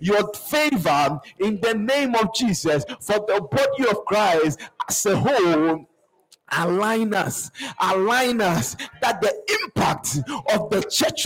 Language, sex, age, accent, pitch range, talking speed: English, male, 50-69, Nigerian, 165-235 Hz, 135 wpm